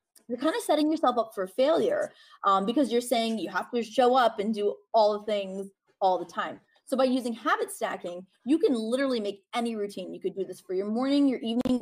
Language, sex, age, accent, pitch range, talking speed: English, female, 20-39, American, 200-245 Hz, 230 wpm